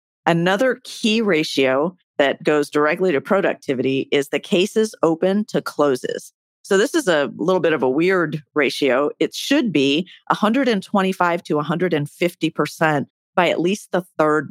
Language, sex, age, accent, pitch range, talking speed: English, female, 40-59, American, 150-190 Hz, 145 wpm